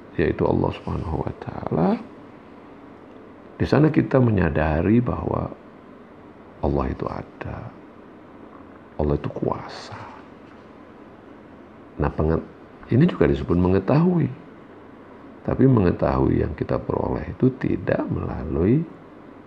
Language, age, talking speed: Indonesian, 50-69, 90 wpm